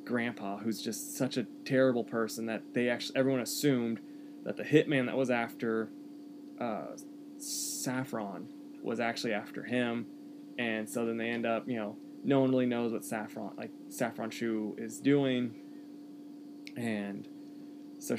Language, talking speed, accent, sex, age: English, 150 wpm, American, male, 20-39